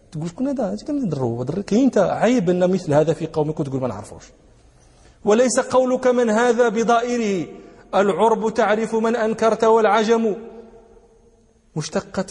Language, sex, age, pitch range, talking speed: English, male, 40-59, 155-220 Hz, 120 wpm